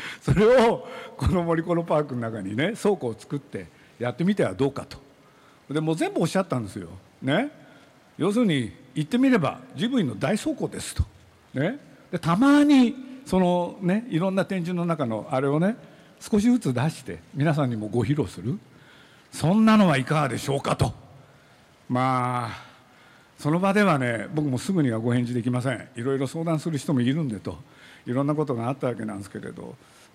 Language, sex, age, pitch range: Japanese, male, 60-79, 125-175 Hz